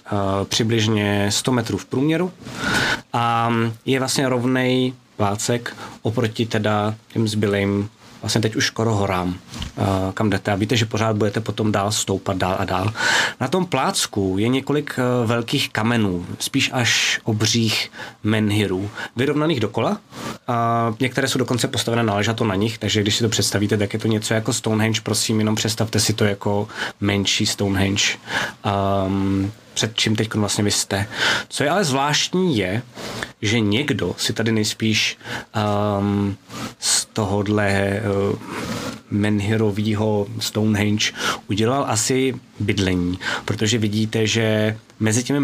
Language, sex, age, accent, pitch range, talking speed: Czech, male, 20-39, native, 105-120 Hz, 140 wpm